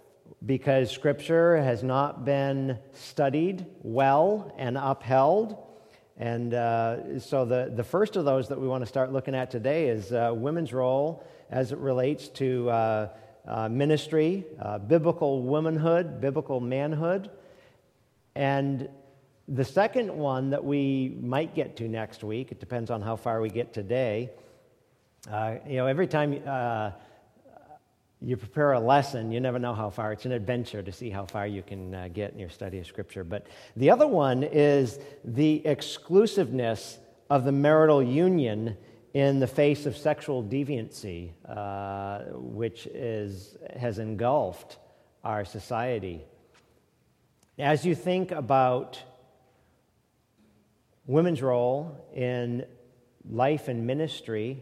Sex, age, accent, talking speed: male, 50-69, American, 135 wpm